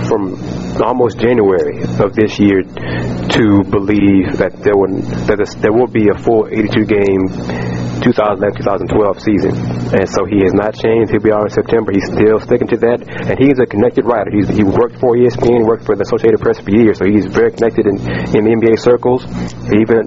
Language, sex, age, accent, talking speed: English, male, 30-49, American, 195 wpm